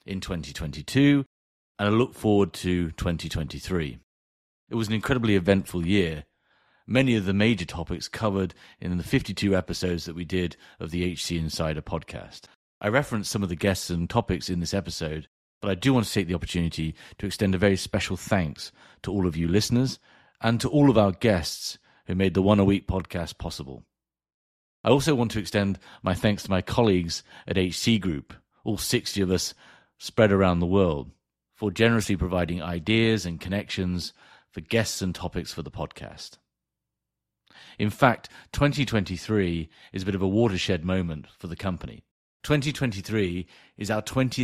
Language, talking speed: English, 165 wpm